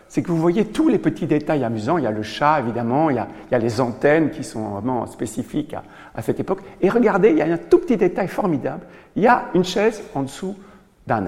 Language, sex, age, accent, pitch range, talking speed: French, male, 60-79, French, 135-205 Hz, 260 wpm